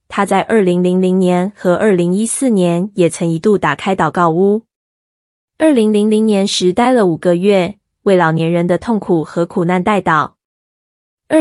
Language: Chinese